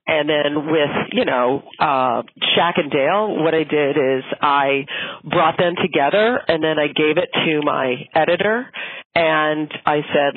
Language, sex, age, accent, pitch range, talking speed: English, female, 40-59, American, 135-170 Hz, 160 wpm